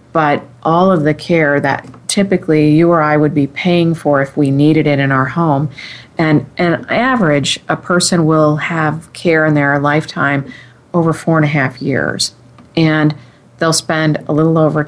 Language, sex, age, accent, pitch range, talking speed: English, female, 40-59, American, 135-160 Hz, 180 wpm